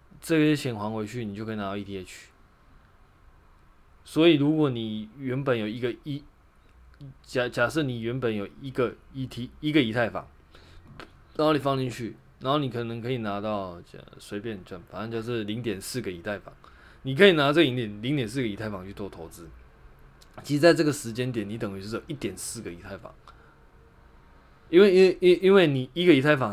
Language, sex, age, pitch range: Chinese, male, 20-39, 100-140 Hz